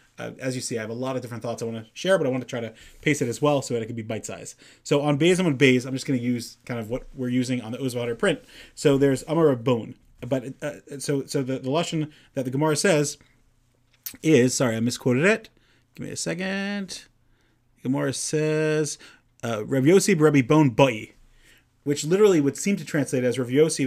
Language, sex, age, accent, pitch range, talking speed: English, male, 30-49, American, 125-150 Hz, 215 wpm